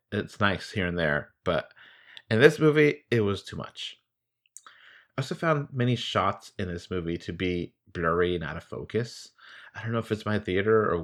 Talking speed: 195 wpm